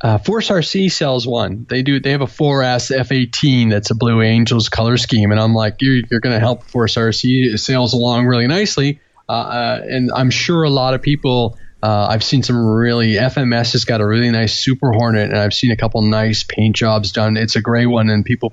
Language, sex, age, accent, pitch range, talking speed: English, male, 20-39, American, 110-140 Hz, 225 wpm